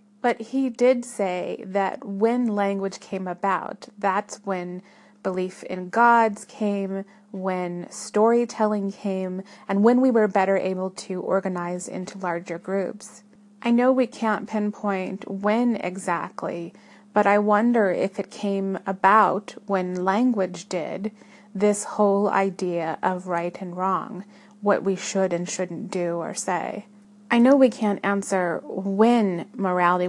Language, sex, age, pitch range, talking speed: English, female, 30-49, 185-210 Hz, 135 wpm